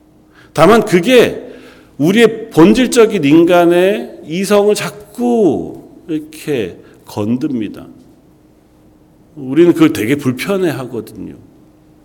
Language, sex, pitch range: Korean, male, 135-210 Hz